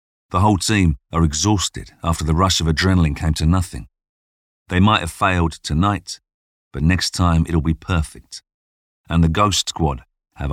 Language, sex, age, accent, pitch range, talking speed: English, male, 40-59, British, 80-90 Hz, 165 wpm